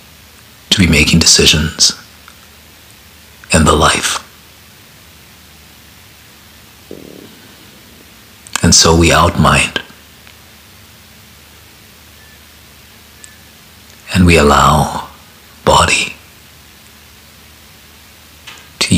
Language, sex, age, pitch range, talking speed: English, male, 60-79, 75-105 Hz, 50 wpm